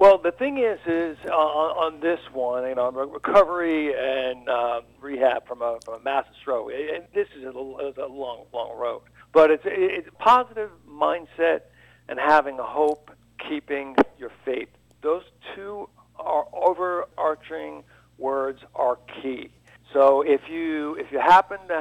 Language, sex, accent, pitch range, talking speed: English, male, American, 130-170 Hz, 150 wpm